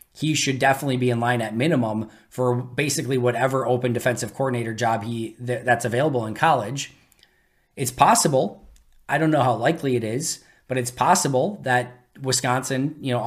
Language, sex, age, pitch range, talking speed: English, male, 20-39, 120-145 Hz, 165 wpm